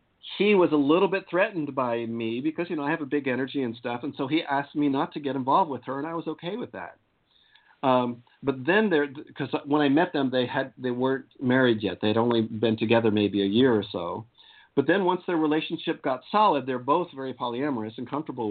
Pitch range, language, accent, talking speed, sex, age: 120-165 Hz, English, American, 235 wpm, male, 50-69